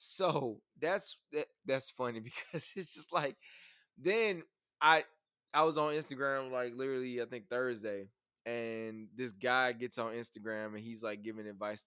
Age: 20-39